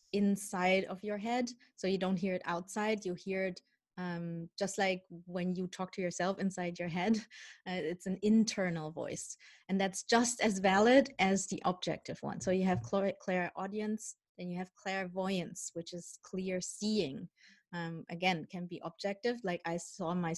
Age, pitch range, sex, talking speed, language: 20-39, 175-200 Hz, female, 180 wpm, English